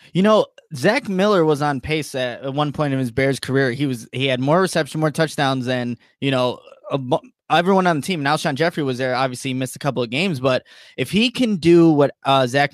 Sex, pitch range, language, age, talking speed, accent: male, 135-175 Hz, English, 20-39, 230 wpm, American